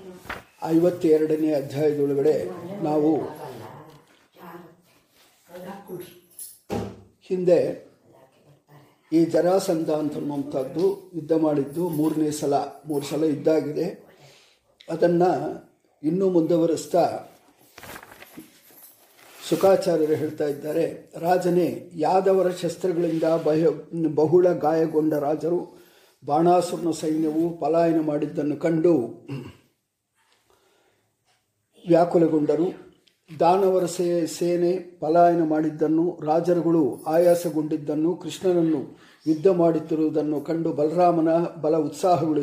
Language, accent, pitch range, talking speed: English, Indian, 155-175 Hz, 80 wpm